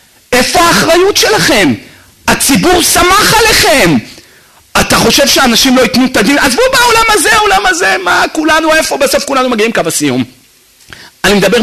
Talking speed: 145 wpm